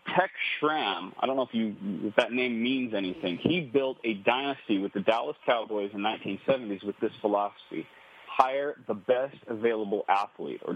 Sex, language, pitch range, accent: male, English, 110-145 Hz, American